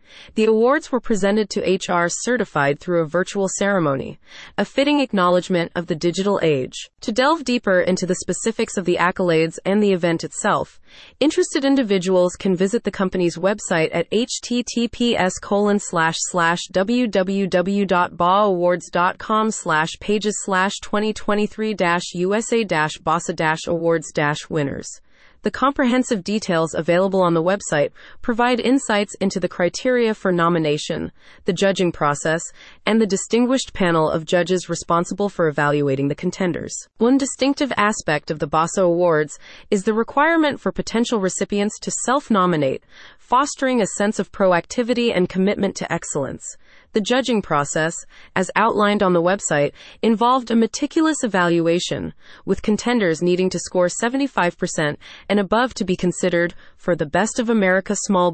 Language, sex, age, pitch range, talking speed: English, female, 30-49, 170-220 Hz, 135 wpm